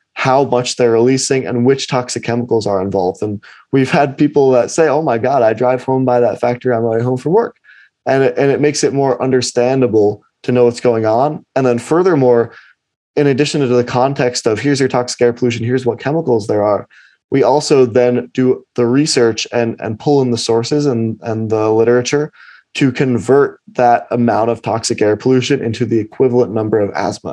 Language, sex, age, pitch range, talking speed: English, male, 20-39, 115-130 Hz, 205 wpm